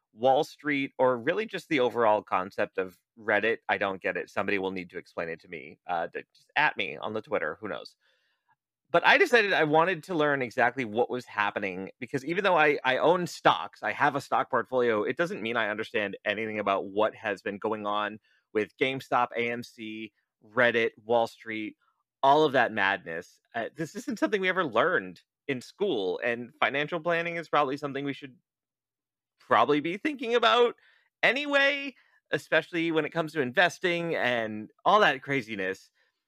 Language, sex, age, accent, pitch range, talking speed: English, male, 30-49, American, 115-165 Hz, 180 wpm